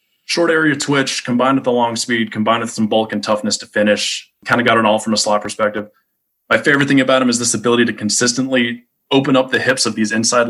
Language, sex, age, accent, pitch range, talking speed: English, male, 20-39, American, 105-125 Hz, 240 wpm